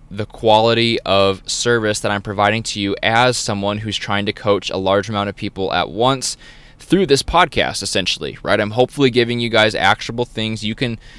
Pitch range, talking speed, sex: 100-125 Hz, 195 wpm, male